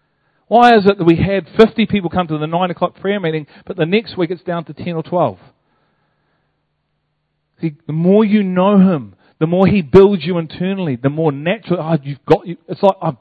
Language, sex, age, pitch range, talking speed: English, male, 40-59, 145-185 Hz, 215 wpm